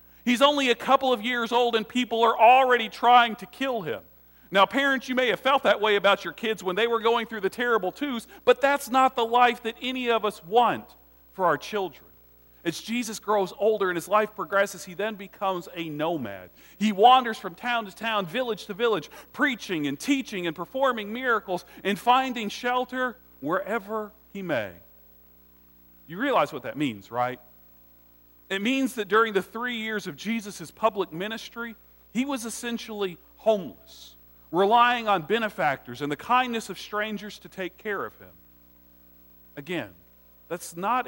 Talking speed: 170 wpm